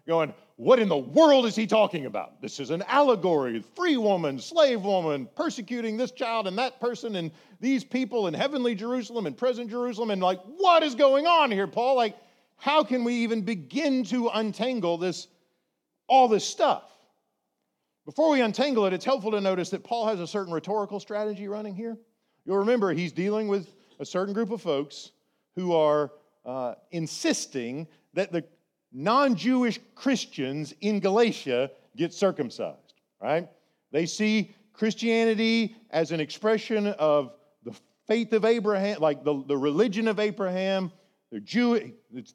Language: English